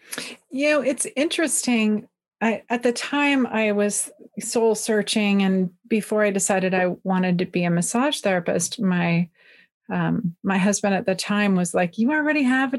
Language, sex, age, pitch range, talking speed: English, female, 30-49, 200-250 Hz, 165 wpm